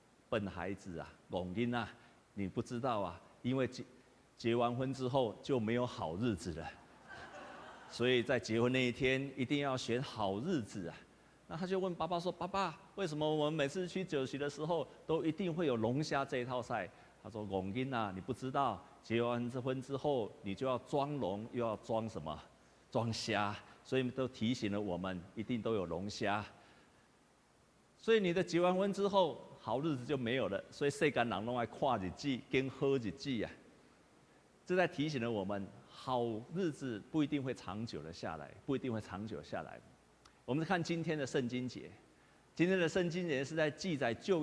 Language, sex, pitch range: Chinese, male, 115-150 Hz